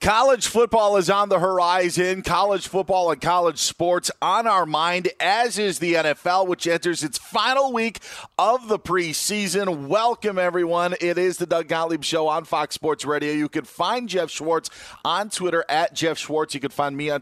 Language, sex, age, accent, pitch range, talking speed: English, male, 40-59, American, 125-170 Hz, 185 wpm